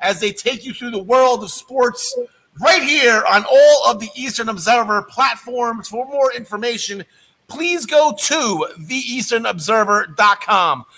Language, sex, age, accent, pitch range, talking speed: English, male, 30-49, American, 185-265 Hz, 135 wpm